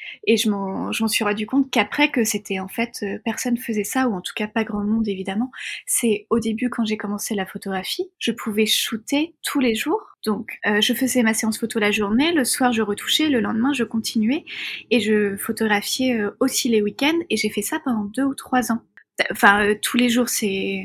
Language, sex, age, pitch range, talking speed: French, female, 20-39, 210-260 Hz, 220 wpm